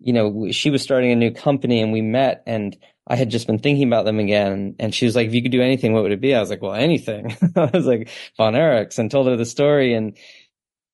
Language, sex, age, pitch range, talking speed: English, male, 20-39, 110-140 Hz, 270 wpm